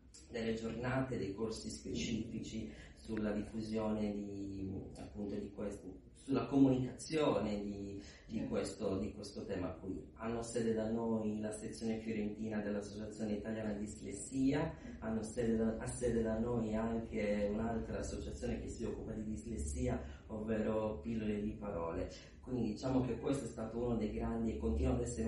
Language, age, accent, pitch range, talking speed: Italian, 40-59, native, 100-115 Hz, 150 wpm